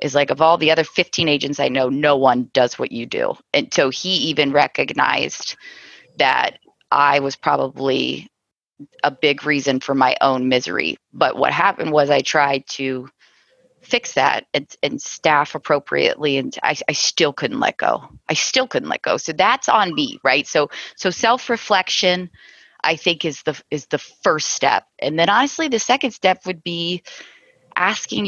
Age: 20-39